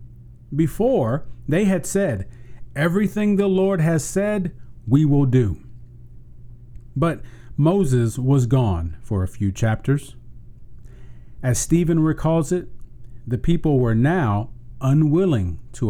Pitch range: 120-140 Hz